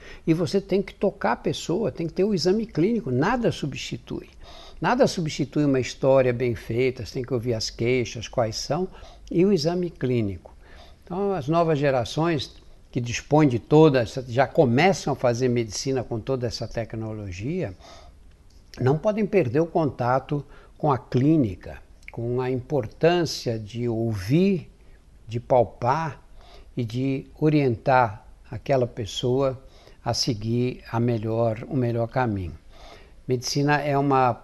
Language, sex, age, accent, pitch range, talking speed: Portuguese, male, 60-79, Brazilian, 115-155 Hz, 135 wpm